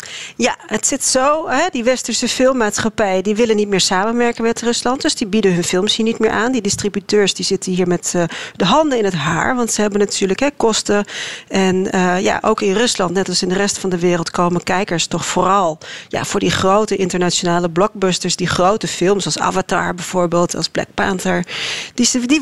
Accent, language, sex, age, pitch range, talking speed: Dutch, Dutch, female, 40-59, 180-225 Hz, 190 wpm